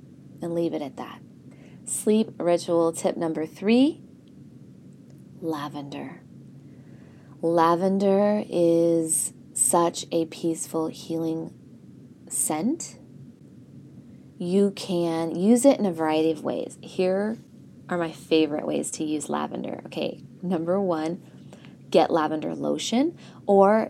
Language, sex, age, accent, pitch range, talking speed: English, female, 20-39, American, 160-195 Hz, 105 wpm